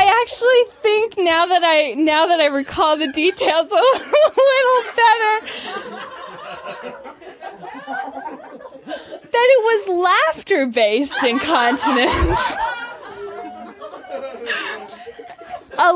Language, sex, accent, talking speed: English, female, American, 80 wpm